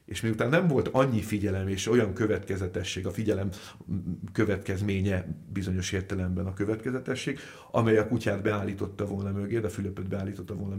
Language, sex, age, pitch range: Hungarian, male, 50-69, 95-110 Hz